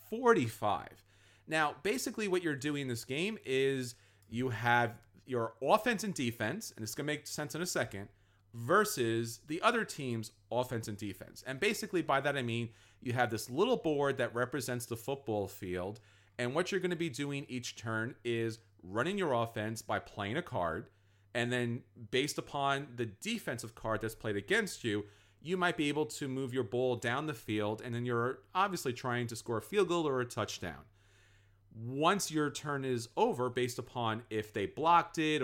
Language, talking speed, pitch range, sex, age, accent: English, 190 wpm, 110-150 Hz, male, 40-59, American